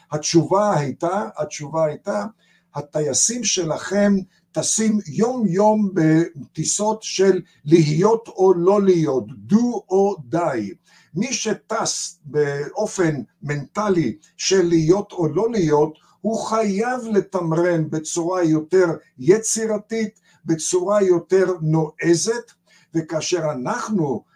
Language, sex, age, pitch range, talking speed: Hebrew, male, 60-79, 160-205 Hz, 95 wpm